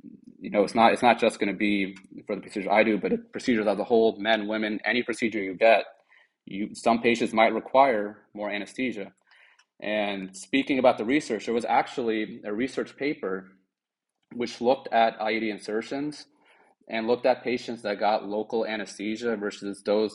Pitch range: 105-115 Hz